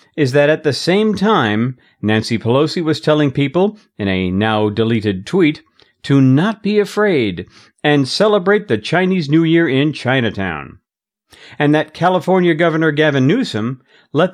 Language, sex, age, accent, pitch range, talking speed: English, male, 50-69, American, 120-160 Hz, 140 wpm